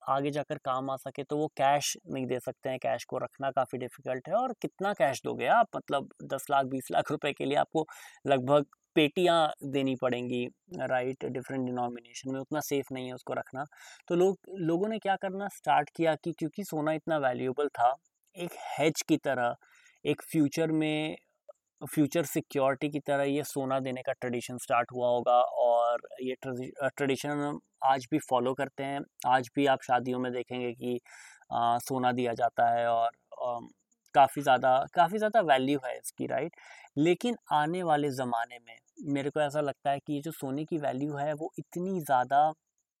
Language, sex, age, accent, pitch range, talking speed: Hindi, male, 20-39, native, 130-155 Hz, 180 wpm